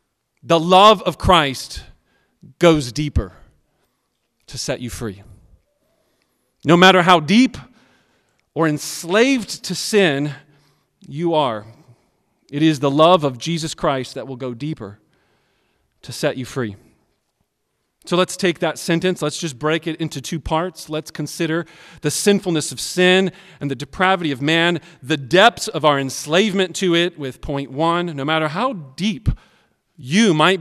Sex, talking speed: male, 145 wpm